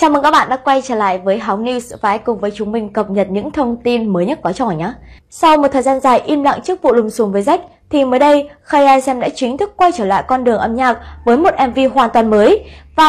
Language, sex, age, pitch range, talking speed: Vietnamese, female, 20-39, 215-285 Hz, 285 wpm